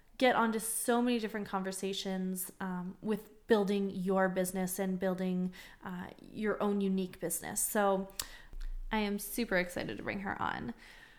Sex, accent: female, American